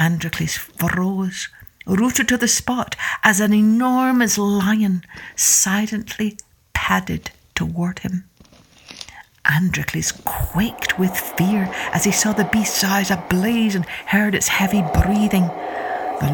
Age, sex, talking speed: 60-79, female, 115 wpm